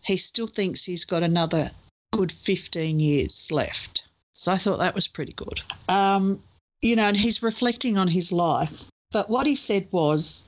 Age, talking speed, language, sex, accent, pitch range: 50-69, 180 wpm, English, female, Australian, 165-195 Hz